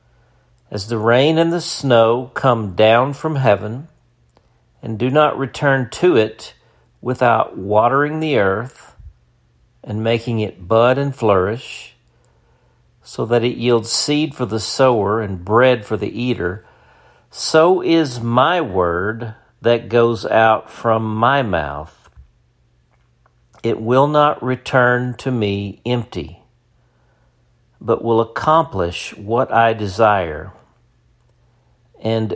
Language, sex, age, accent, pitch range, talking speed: English, male, 50-69, American, 100-120 Hz, 115 wpm